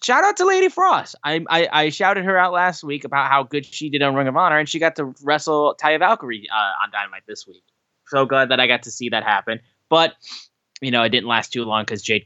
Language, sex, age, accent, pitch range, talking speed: English, male, 10-29, American, 110-145 Hz, 260 wpm